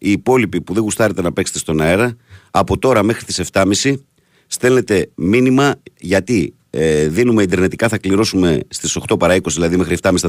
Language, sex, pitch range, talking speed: Greek, male, 90-120 Hz, 175 wpm